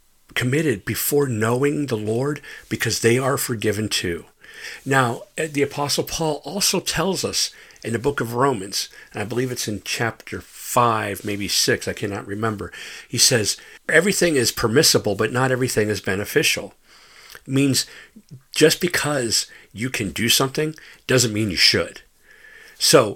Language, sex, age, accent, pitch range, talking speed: English, male, 50-69, American, 110-150 Hz, 145 wpm